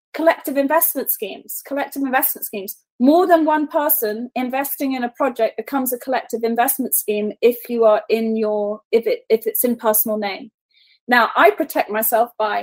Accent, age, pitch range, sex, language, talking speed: British, 30-49, 225-300 Hz, female, English, 170 wpm